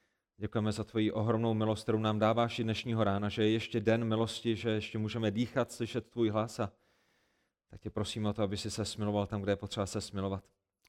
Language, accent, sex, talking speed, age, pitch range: Czech, native, male, 215 wpm, 30-49, 115-160 Hz